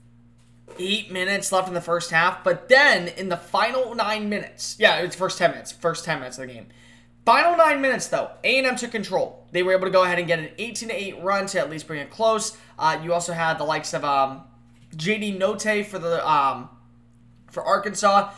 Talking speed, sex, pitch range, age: 210 wpm, male, 155-195 Hz, 20-39